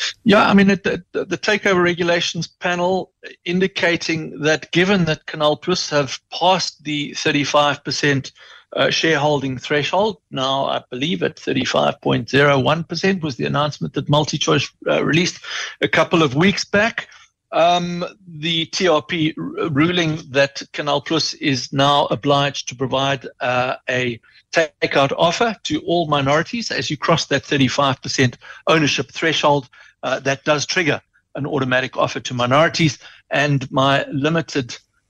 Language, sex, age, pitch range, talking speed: English, male, 60-79, 135-170 Hz, 125 wpm